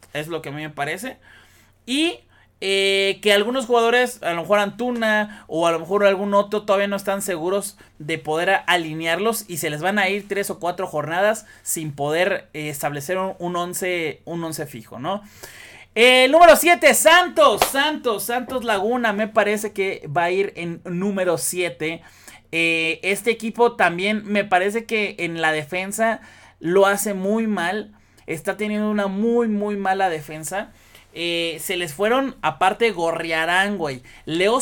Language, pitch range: Spanish, 165-215 Hz